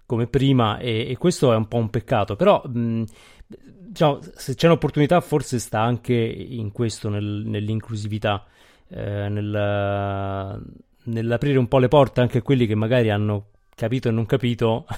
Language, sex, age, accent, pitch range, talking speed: Italian, male, 30-49, native, 105-125 Hz, 145 wpm